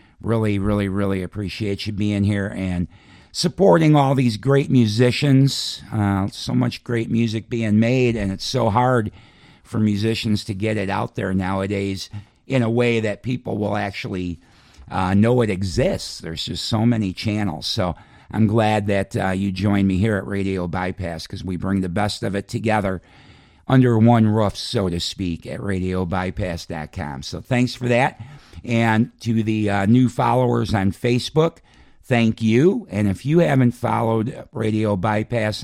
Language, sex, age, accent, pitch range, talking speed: English, male, 50-69, American, 100-120 Hz, 165 wpm